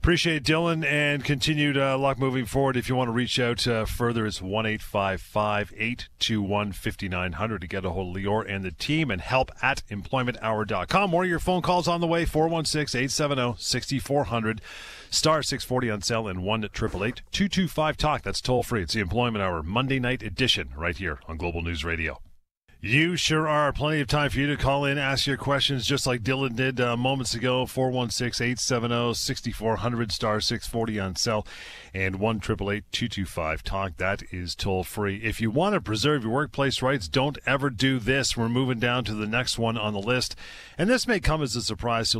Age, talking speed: 40-59, 205 wpm